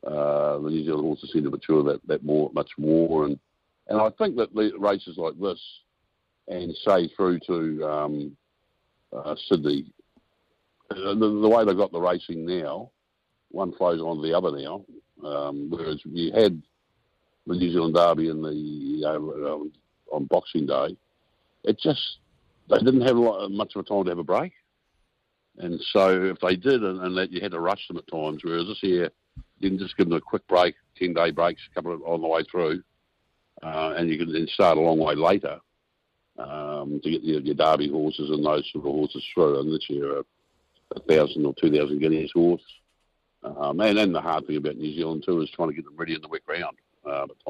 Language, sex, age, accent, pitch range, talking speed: English, male, 60-79, Australian, 75-85 Hz, 195 wpm